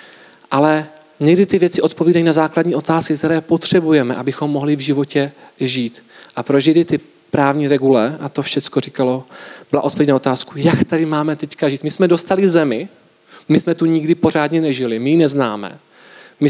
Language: Czech